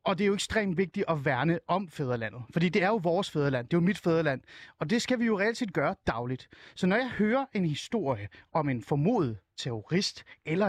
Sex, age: male, 30-49